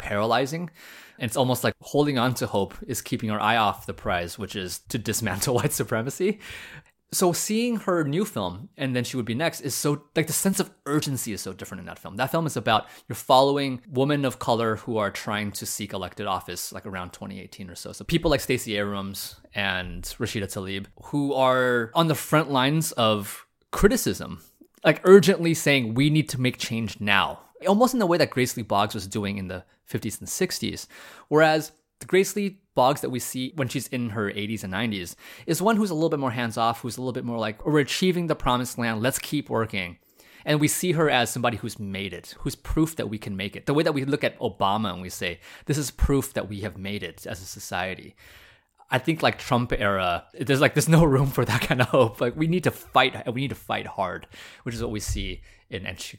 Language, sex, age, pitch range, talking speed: English, male, 20-39, 105-150 Hz, 230 wpm